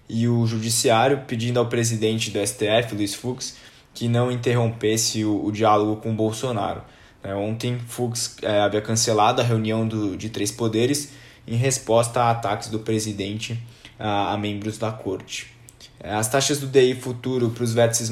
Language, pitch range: Portuguese, 110-120 Hz